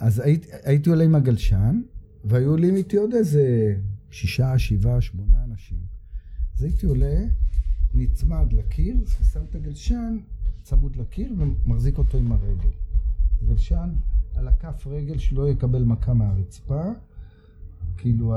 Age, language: 50-69, Hebrew